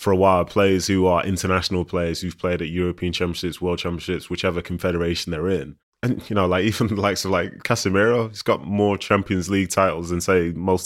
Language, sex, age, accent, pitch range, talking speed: English, male, 20-39, British, 85-95 Hz, 210 wpm